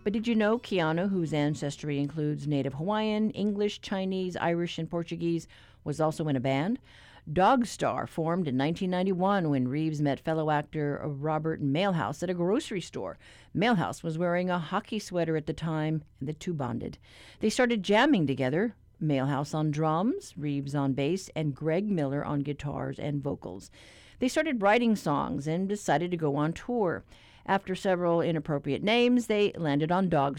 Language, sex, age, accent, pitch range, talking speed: English, female, 50-69, American, 145-190 Hz, 165 wpm